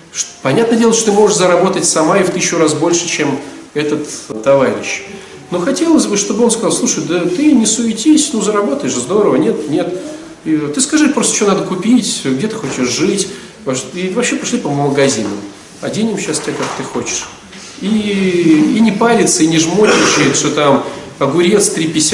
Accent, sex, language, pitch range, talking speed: native, male, Russian, 150-230 Hz, 170 wpm